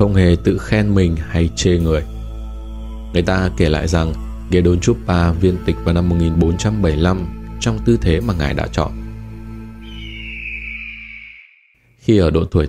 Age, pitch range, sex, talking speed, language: 20-39, 80-95 Hz, male, 140 wpm, Vietnamese